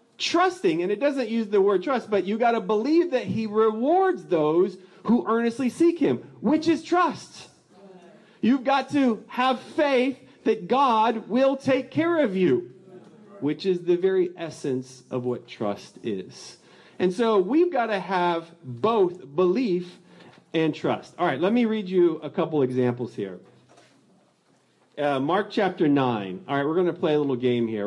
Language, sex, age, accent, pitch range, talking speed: English, male, 40-59, American, 130-220 Hz, 170 wpm